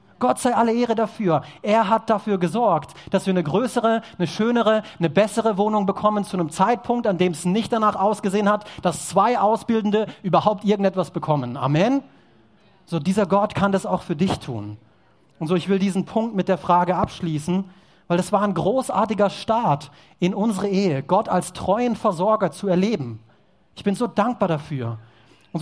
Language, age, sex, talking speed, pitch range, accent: German, 30-49, male, 180 wpm, 155-200 Hz, German